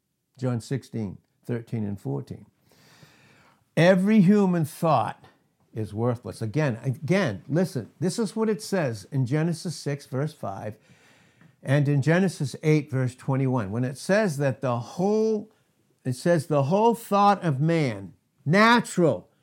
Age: 60-79